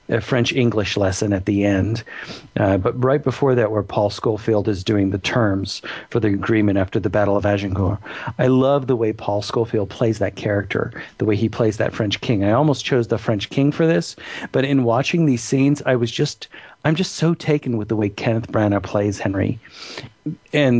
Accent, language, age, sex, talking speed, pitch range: American, English, 40-59, male, 205 wpm, 105-130 Hz